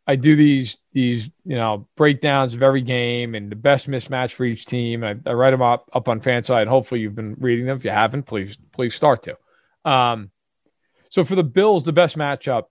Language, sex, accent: English, male, American